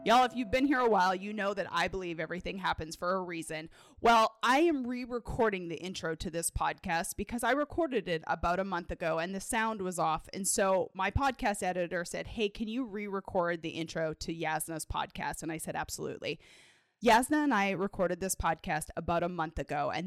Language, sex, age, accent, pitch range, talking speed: English, female, 20-39, American, 170-220 Hz, 205 wpm